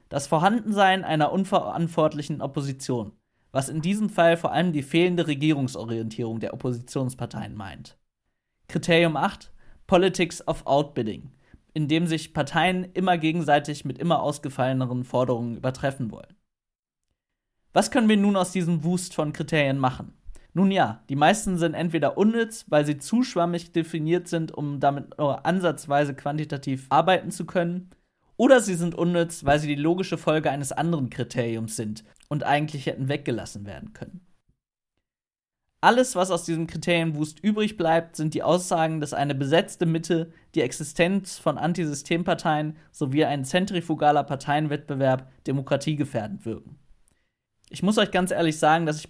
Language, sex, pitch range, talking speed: German, male, 135-170 Hz, 140 wpm